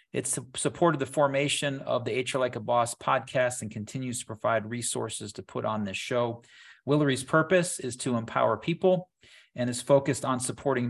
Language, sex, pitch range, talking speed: English, male, 125-145 Hz, 175 wpm